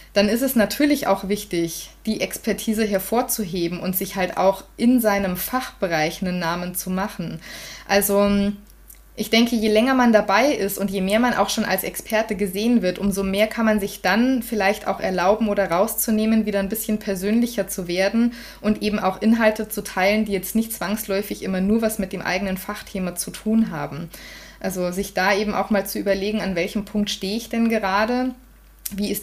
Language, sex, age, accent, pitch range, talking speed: German, female, 20-39, German, 190-220 Hz, 190 wpm